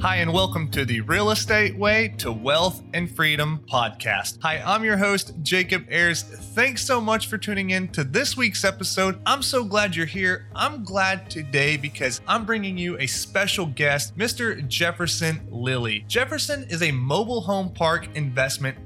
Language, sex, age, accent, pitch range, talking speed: English, male, 30-49, American, 135-195 Hz, 170 wpm